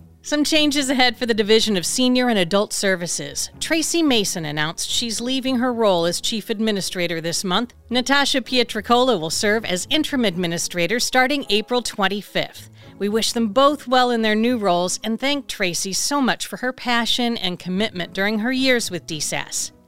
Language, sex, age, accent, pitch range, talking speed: English, female, 40-59, American, 195-255 Hz, 170 wpm